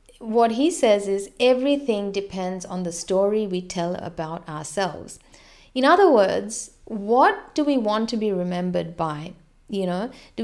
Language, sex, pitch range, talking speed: English, female, 185-255 Hz, 155 wpm